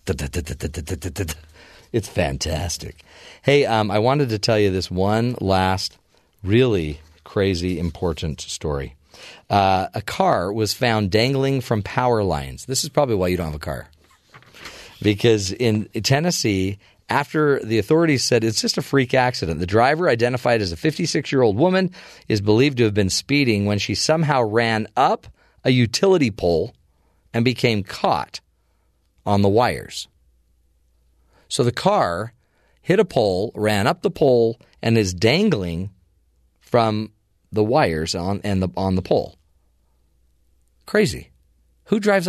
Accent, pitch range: American, 85-120 Hz